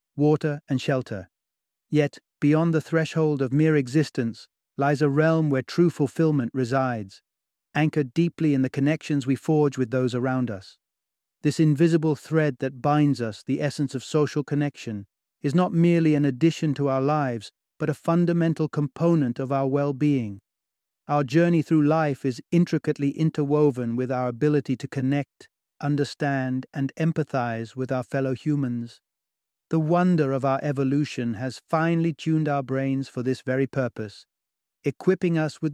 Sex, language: male, English